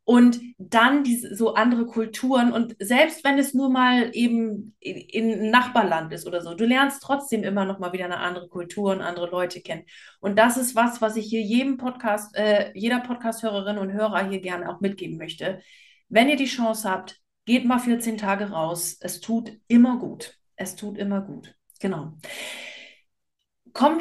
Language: German